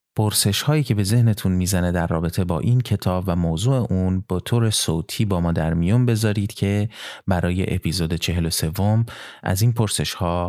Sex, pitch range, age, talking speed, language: male, 85-110 Hz, 30-49, 160 wpm, Persian